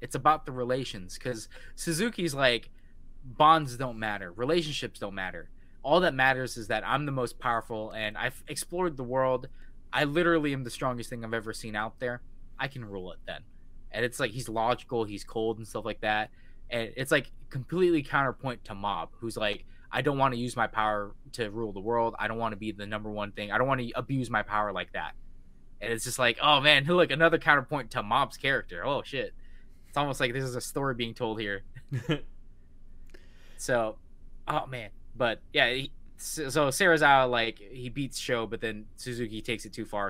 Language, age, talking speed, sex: English, 20-39, 205 wpm, male